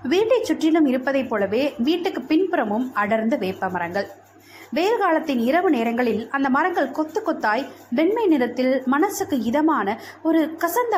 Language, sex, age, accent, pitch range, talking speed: Tamil, female, 20-39, native, 230-340 Hz, 125 wpm